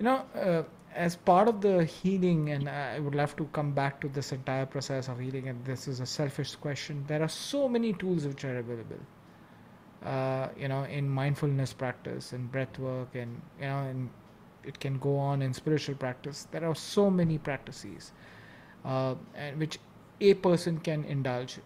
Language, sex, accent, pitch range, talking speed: English, male, Indian, 140-180 Hz, 185 wpm